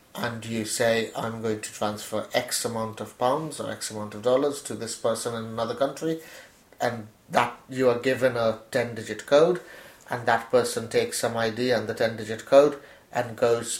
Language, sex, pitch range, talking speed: English, male, 110-130 Hz, 190 wpm